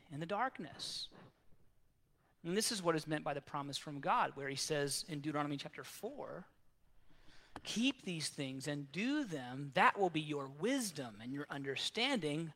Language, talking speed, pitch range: English, 165 wpm, 145-210 Hz